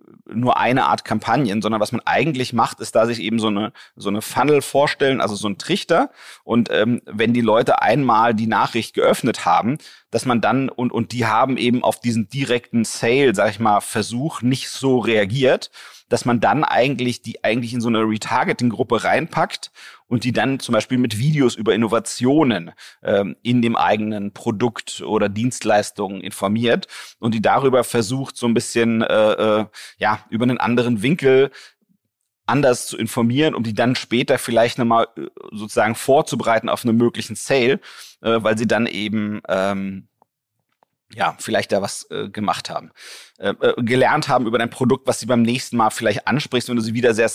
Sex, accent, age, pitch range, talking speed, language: male, German, 40-59, 110-125 Hz, 175 wpm, German